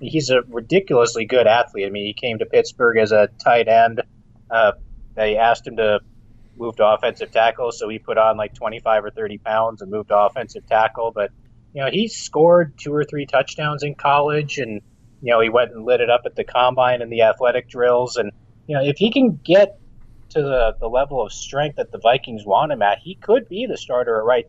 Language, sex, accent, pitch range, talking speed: English, male, American, 110-140 Hz, 225 wpm